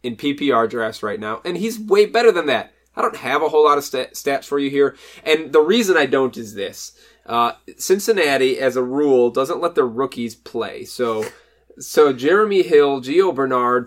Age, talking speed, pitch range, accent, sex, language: 20-39, 200 wpm, 115-150 Hz, American, male, English